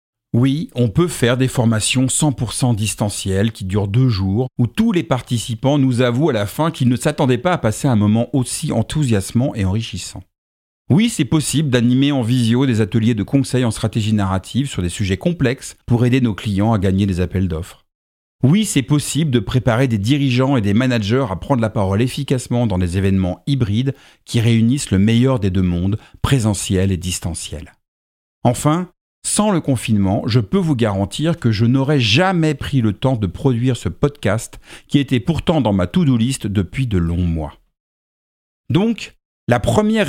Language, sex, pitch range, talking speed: French, male, 100-135 Hz, 180 wpm